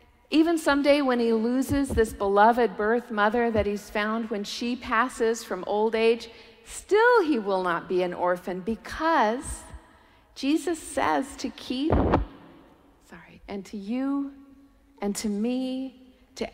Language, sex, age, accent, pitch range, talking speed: English, female, 50-69, American, 190-255 Hz, 140 wpm